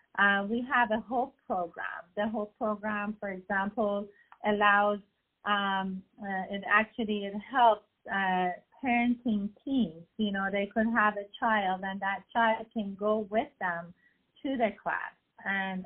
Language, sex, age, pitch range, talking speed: English, female, 30-49, 190-220 Hz, 150 wpm